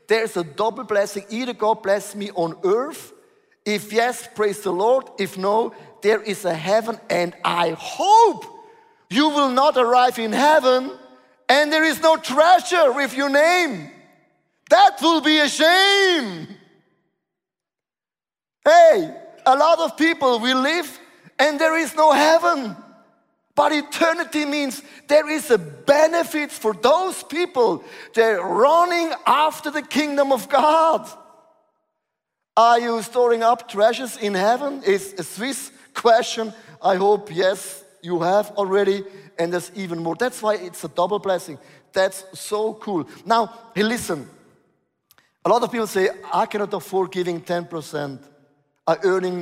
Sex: male